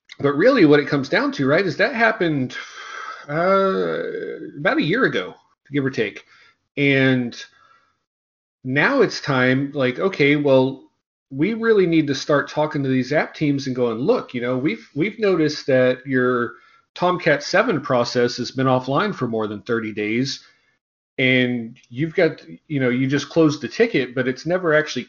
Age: 40-59